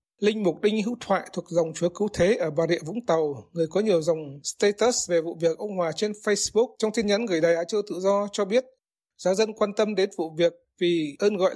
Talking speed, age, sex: 250 wpm, 20-39, male